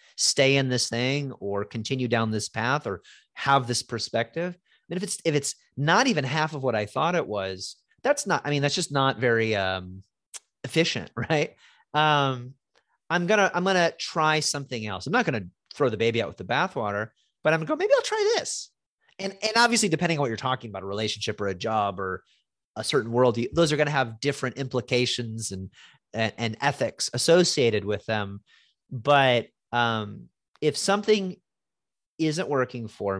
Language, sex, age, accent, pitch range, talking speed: English, male, 30-49, American, 110-165 Hz, 195 wpm